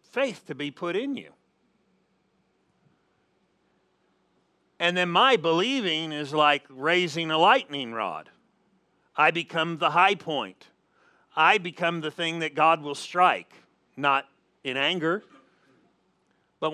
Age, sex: 50-69, male